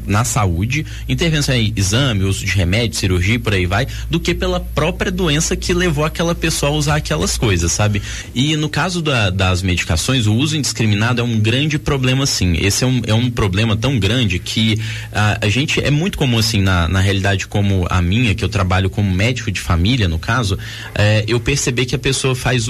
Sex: male